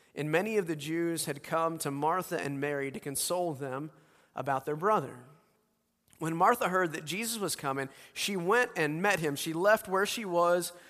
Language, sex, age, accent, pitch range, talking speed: English, male, 30-49, American, 145-185 Hz, 185 wpm